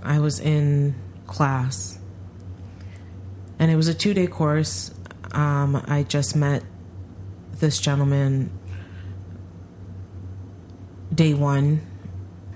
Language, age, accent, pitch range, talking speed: English, 30-49, American, 95-145 Hz, 90 wpm